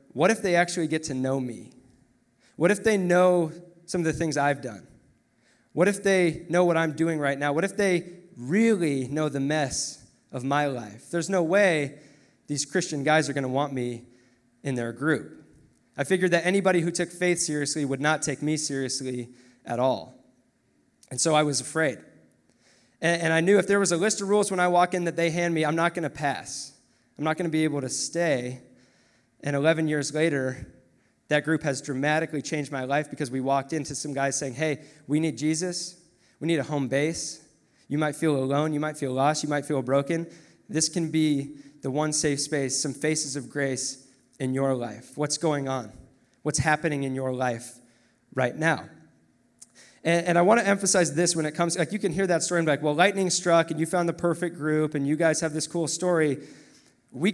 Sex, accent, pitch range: male, American, 135-170 Hz